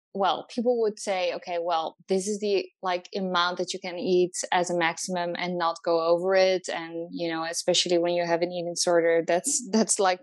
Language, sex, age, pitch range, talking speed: English, female, 20-39, 175-200 Hz, 210 wpm